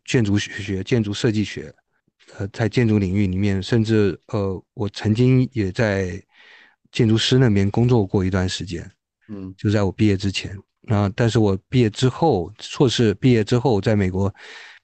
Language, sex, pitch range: Chinese, male, 100-120 Hz